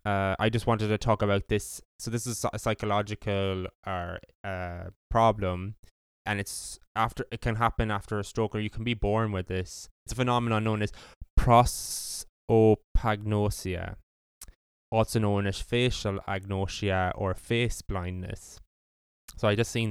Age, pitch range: 10-29, 95-110 Hz